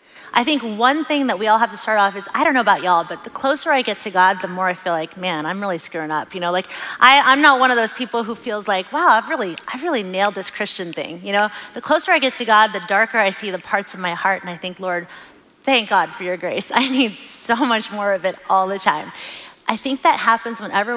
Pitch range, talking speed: 185-250 Hz, 275 wpm